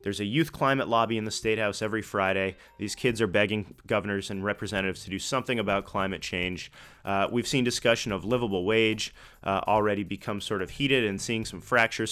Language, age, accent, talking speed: English, 30-49, American, 200 wpm